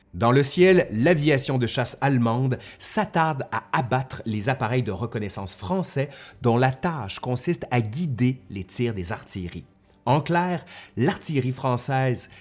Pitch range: 100-140 Hz